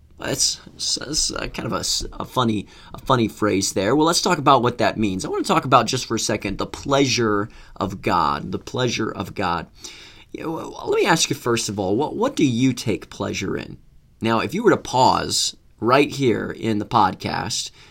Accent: American